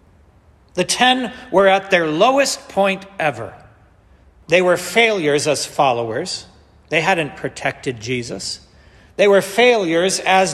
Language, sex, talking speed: English, male, 120 wpm